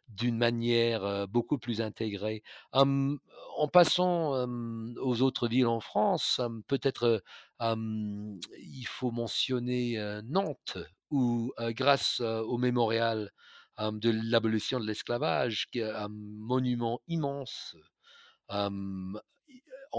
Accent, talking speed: French, 125 wpm